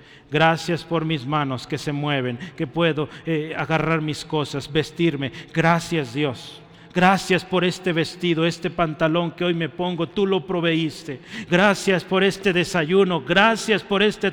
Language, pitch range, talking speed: Spanish, 150-185 Hz, 150 wpm